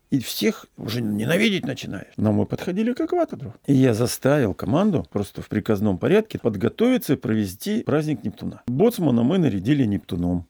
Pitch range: 120-170 Hz